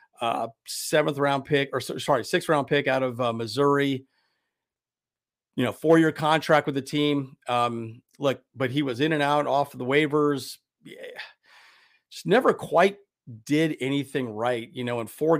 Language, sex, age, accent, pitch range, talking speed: English, male, 40-59, American, 130-155 Hz, 155 wpm